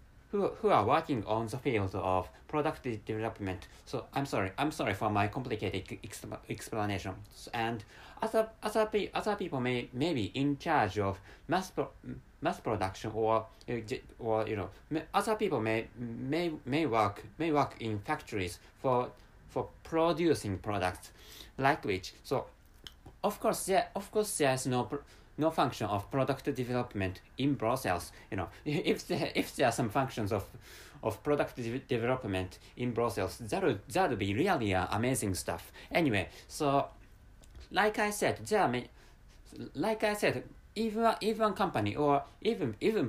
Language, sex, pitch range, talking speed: English, male, 105-145 Hz, 155 wpm